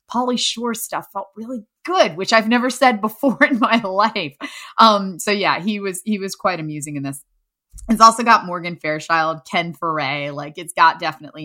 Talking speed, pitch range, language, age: 190 wpm, 165-230 Hz, English, 20-39